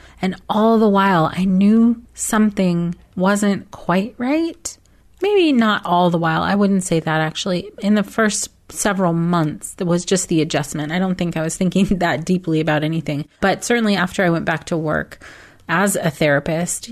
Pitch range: 170-200 Hz